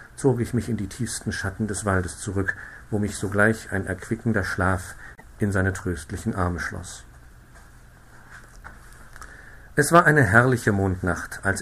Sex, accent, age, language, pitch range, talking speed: male, German, 50-69, German, 95-125 Hz, 140 wpm